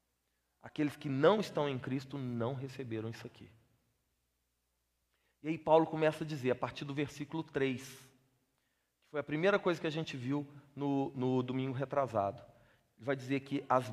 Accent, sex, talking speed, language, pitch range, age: Brazilian, male, 170 wpm, Portuguese, 135-210 Hz, 40-59